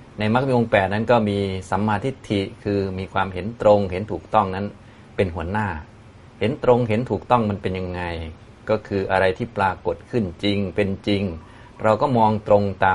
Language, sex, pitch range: Thai, male, 90-110 Hz